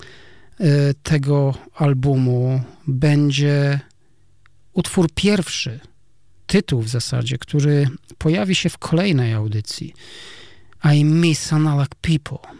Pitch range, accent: 120-145 Hz, native